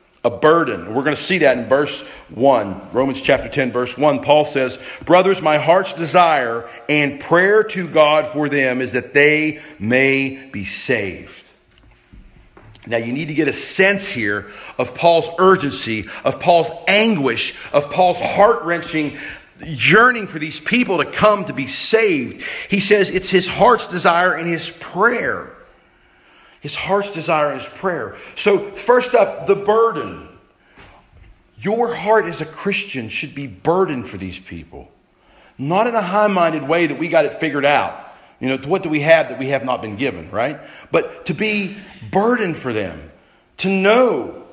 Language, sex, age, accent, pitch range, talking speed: English, male, 40-59, American, 145-195 Hz, 165 wpm